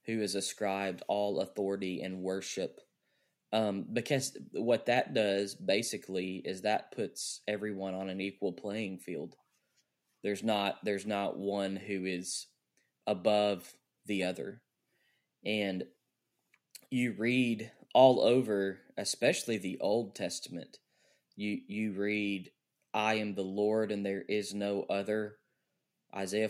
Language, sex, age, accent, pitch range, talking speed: English, male, 10-29, American, 100-110 Hz, 120 wpm